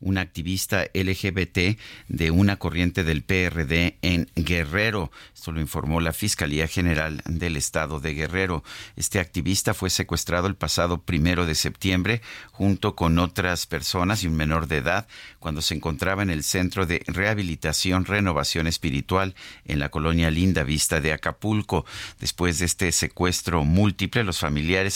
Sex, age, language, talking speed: male, 50-69, Spanish, 150 wpm